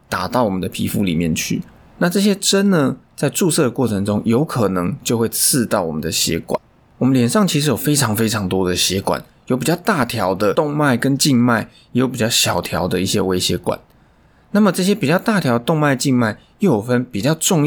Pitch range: 105-155 Hz